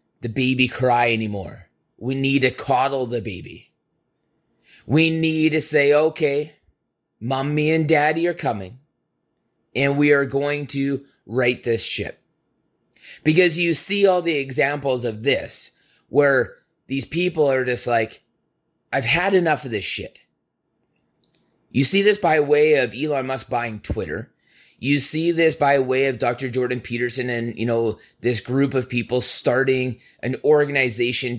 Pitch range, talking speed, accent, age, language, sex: 120-150 Hz, 145 wpm, American, 30-49, English, male